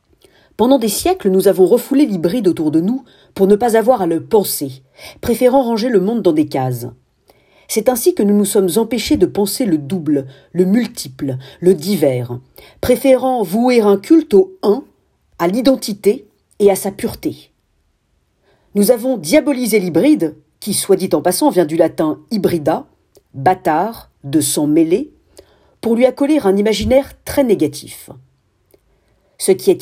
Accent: French